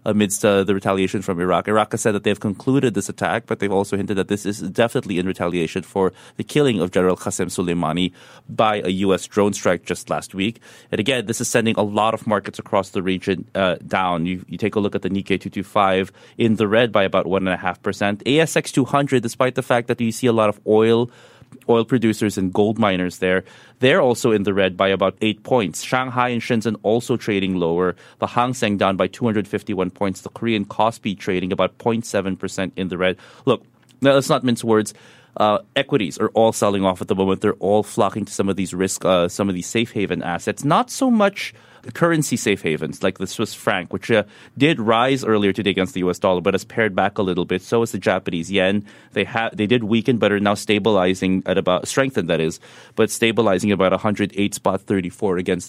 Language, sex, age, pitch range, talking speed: English, male, 30-49, 95-115 Hz, 220 wpm